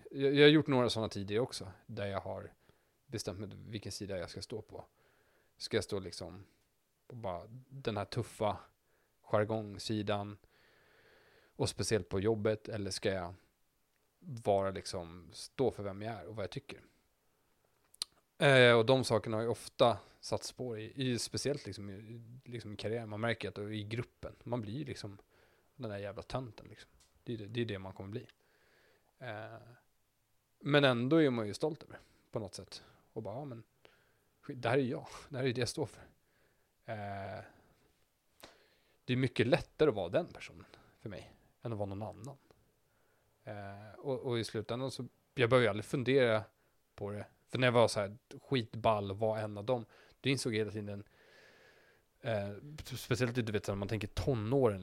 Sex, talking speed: male, 175 wpm